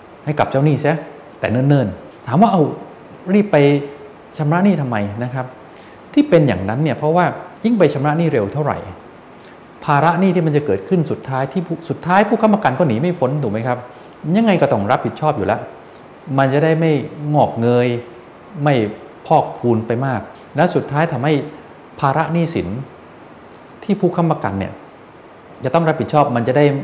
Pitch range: 115-155 Hz